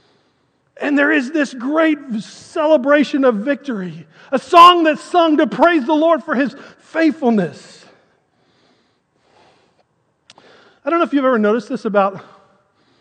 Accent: American